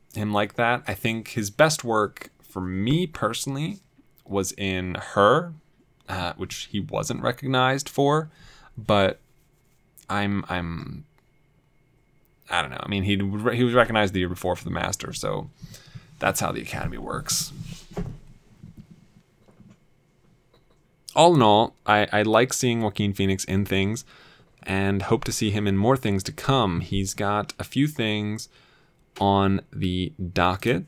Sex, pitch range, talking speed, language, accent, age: male, 95-125 Hz, 140 wpm, English, American, 10-29